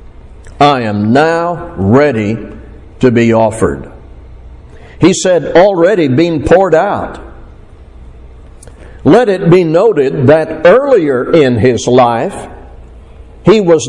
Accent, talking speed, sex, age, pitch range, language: American, 105 wpm, male, 60-79, 110-170 Hz, English